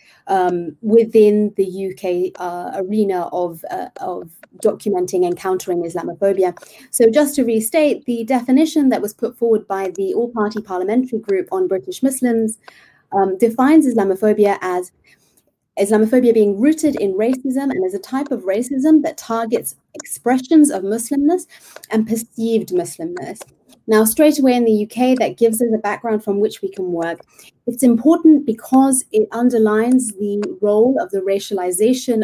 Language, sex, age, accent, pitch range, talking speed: Turkish, female, 30-49, British, 195-255 Hz, 150 wpm